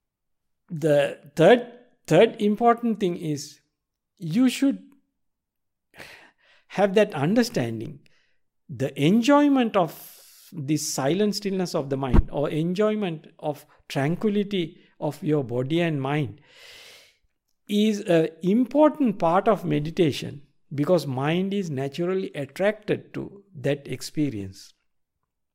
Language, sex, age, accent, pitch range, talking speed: English, male, 60-79, Indian, 135-185 Hz, 100 wpm